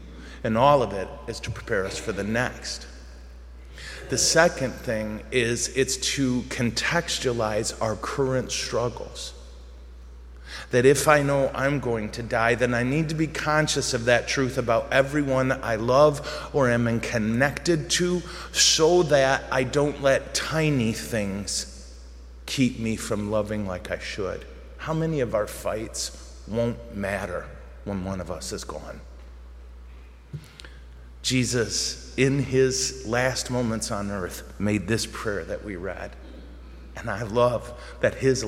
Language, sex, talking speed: English, male, 140 wpm